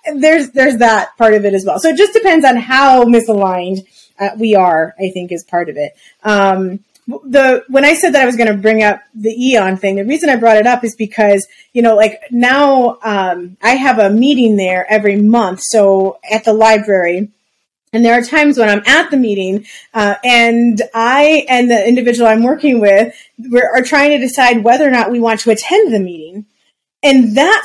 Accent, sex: American, female